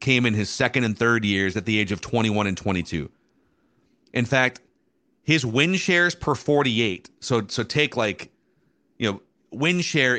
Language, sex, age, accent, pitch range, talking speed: English, male, 30-49, American, 110-145 Hz, 170 wpm